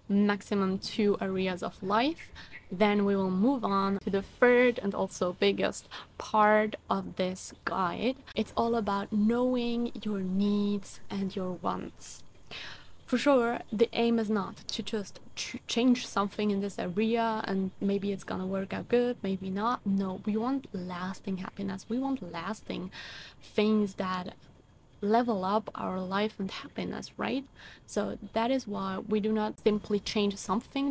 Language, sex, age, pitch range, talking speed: English, female, 20-39, 195-230 Hz, 150 wpm